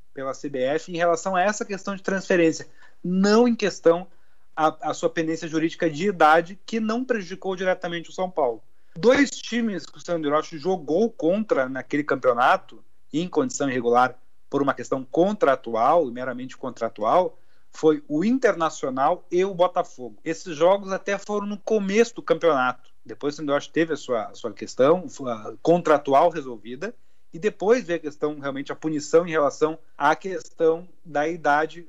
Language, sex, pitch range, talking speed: Portuguese, male, 150-195 Hz, 160 wpm